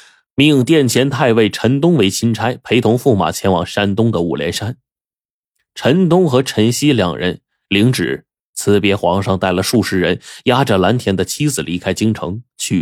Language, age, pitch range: Chinese, 20-39, 95-120 Hz